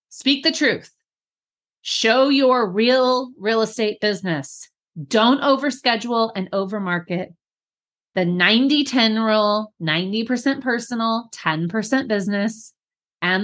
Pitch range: 185-245 Hz